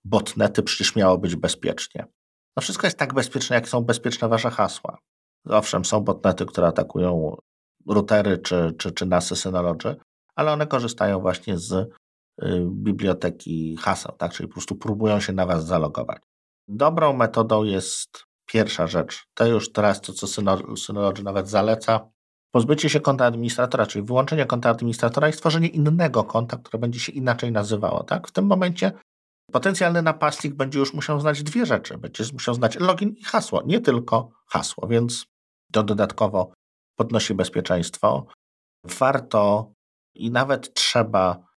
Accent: native